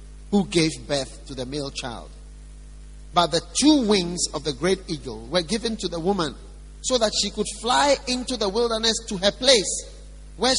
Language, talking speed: English, 180 wpm